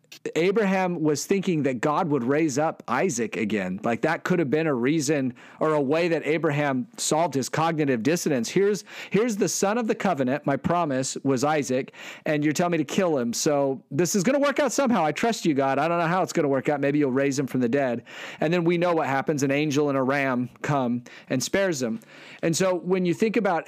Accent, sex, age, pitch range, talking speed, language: American, male, 40-59, 140-175 Hz, 235 wpm, English